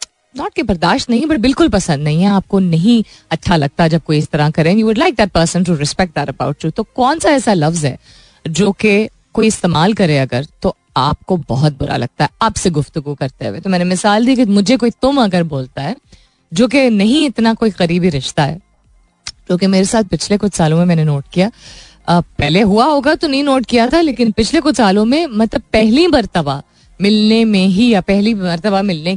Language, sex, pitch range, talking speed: Hindi, female, 165-230 Hz, 200 wpm